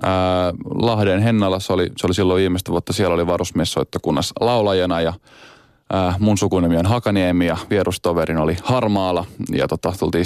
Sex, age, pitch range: male, 20-39, 85-100 Hz